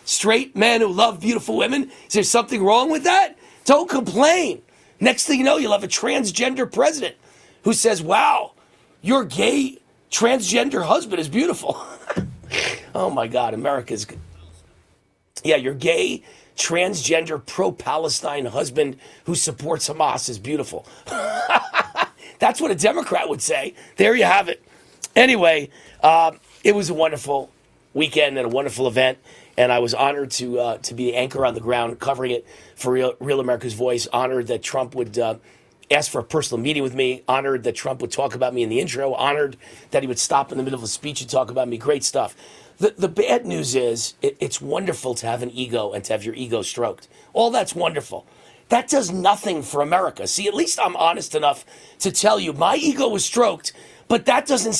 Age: 40-59